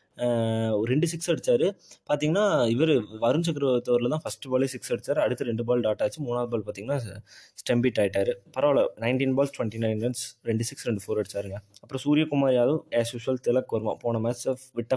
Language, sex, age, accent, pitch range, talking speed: Tamil, male, 20-39, native, 105-130 Hz, 175 wpm